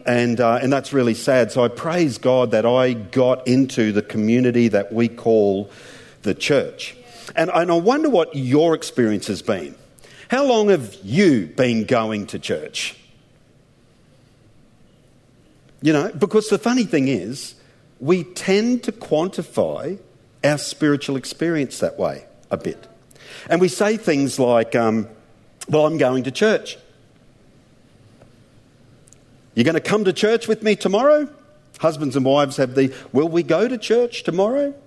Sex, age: male, 50-69